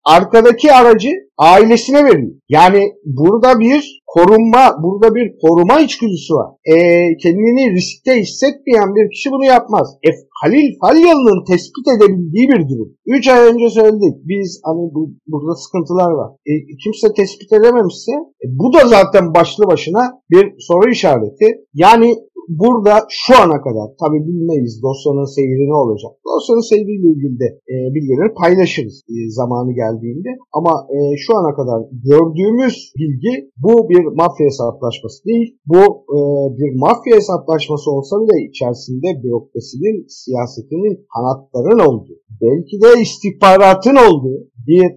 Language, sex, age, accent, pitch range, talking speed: Turkish, male, 50-69, native, 150-225 Hz, 135 wpm